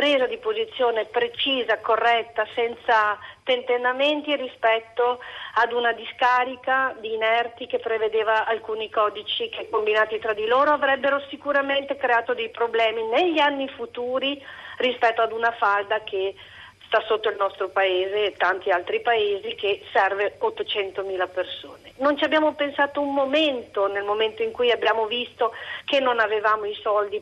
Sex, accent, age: female, native, 40-59